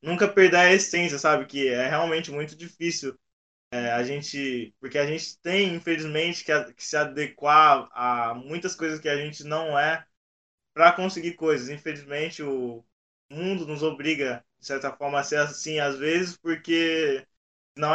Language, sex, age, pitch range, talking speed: Portuguese, male, 20-39, 140-165 Hz, 155 wpm